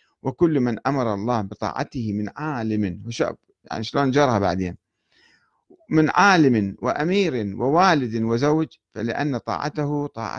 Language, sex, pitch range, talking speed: Arabic, male, 115-165 Hz, 110 wpm